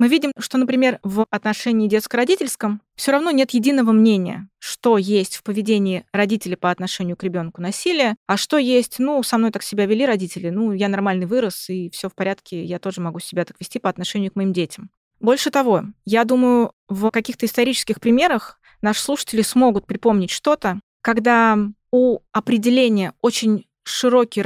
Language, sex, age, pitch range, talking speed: Russian, female, 20-39, 200-250 Hz, 170 wpm